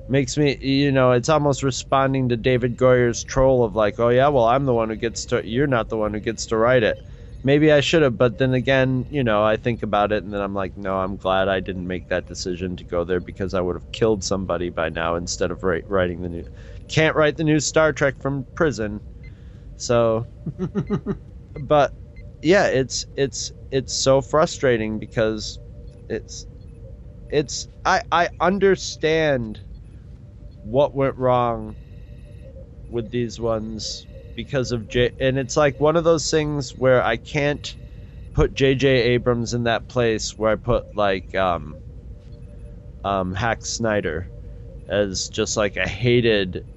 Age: 30-49